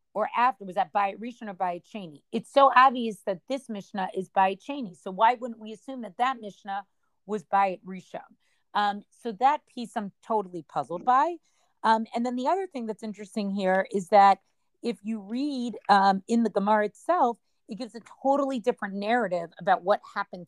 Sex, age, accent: female, 40-59, American